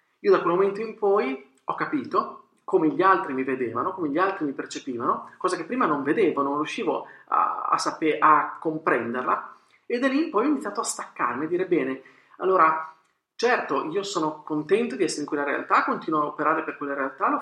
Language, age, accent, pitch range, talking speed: Italian, 40-59, native, 140-210 Hz, 205 wpm